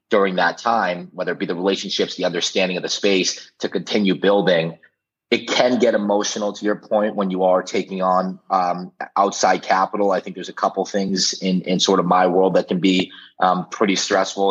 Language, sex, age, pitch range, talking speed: English, male, 30-49, 90-100 Hz, 205 wpm